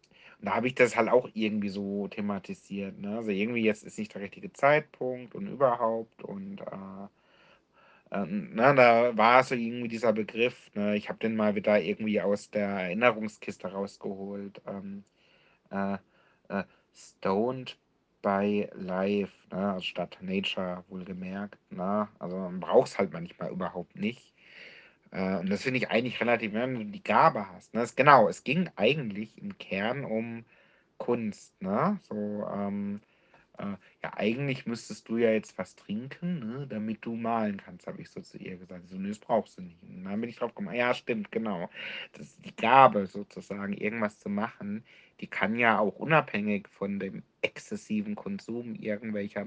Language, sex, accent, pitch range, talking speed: German, male, German, 100-135 Hz, 165 wpm